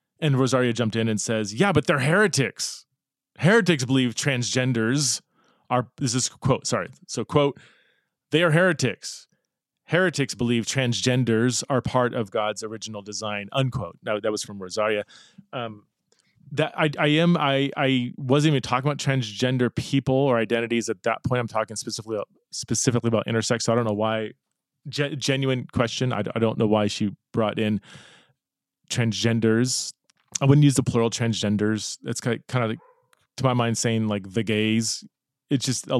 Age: 20-39